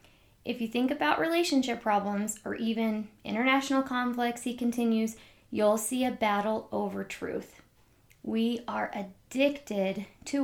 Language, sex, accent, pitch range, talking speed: English, female, American, 210-270 Hz, 125 wpm